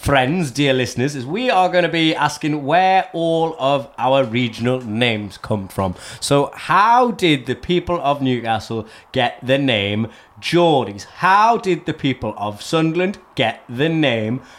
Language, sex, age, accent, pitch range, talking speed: English, male, 30-49, British, 115-160 Hz, 155 wpm